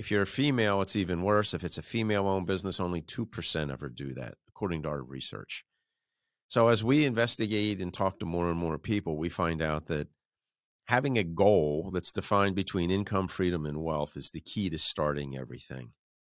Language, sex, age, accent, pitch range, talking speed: English, male, 50-69, American, 80-100 Hz, 195 wpm